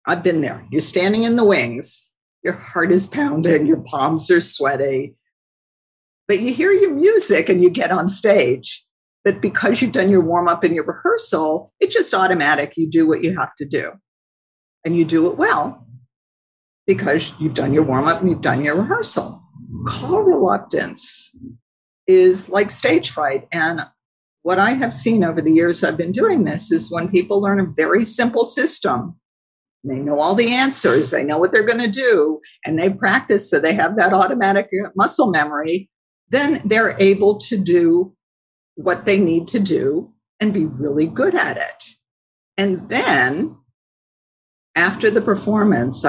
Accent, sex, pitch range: American, female, 155-215 Hz